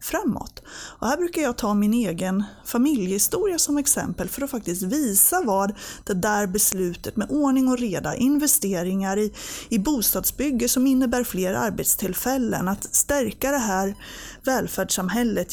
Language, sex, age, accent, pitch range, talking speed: Swedish, female, 30-49, native, 205-290 Hz, 135 wpm